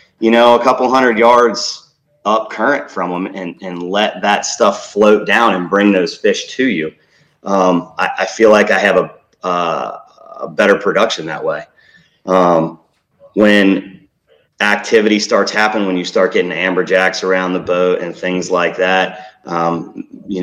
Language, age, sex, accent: English, 30-49, male, American